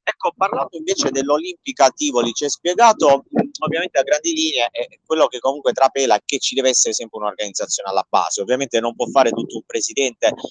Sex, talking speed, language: male, 195 wpm, Italian